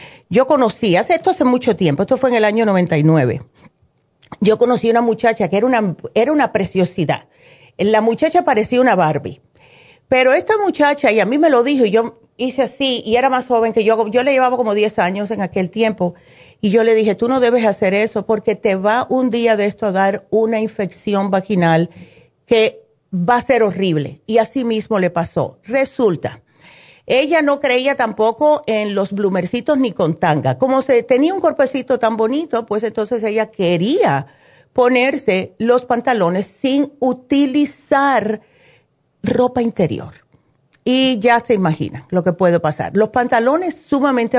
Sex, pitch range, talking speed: female, 195-255 Hz, 170 wpm